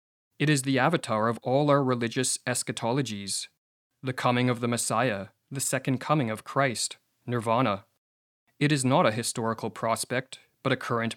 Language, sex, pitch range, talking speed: English, male, 115-140 Hz, 155 wpm